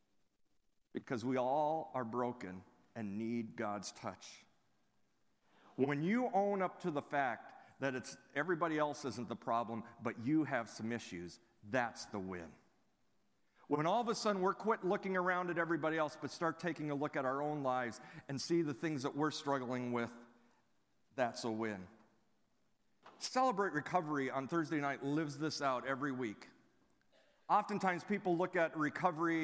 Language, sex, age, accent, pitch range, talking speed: English, male, 50-69, American, 125-160 Hz, 160 wpm